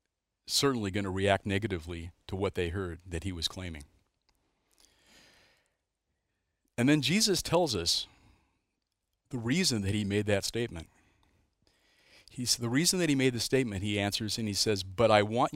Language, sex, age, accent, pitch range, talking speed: English, male, 40-59, American, 95-115 Hz, 160 wpm